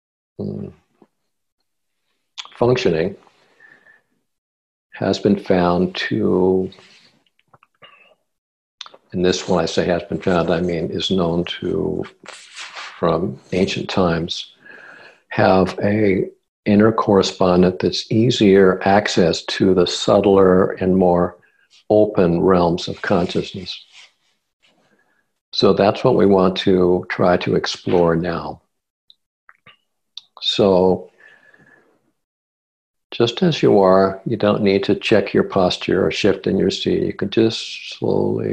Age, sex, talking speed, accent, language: 60-79, male, 105 wpm, American, English